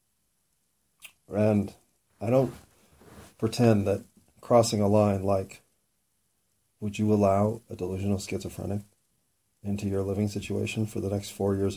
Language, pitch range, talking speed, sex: English, 100-110 Hz, 120 wpm, male